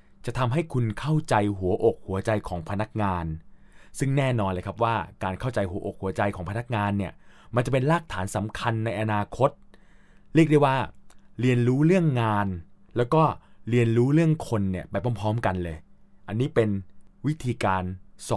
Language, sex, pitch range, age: Thai, male, 100-135 Hz, 20-39